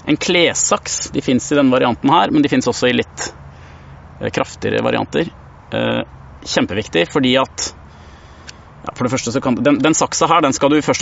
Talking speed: 180 wpm